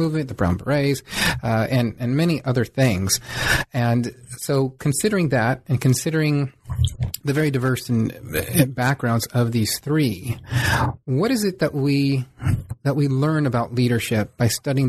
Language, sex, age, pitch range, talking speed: English, male, 30-49, 115-140 Hz, 145 wpm